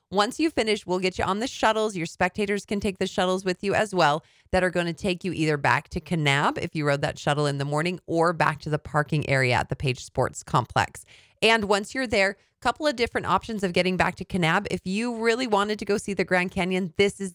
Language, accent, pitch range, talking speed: English, American, 145-190 Hz, 255 wpm